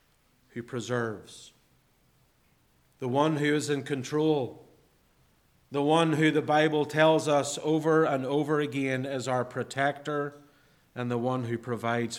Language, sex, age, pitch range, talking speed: English, male, 40-59, 110-150 Hz, 135 wpm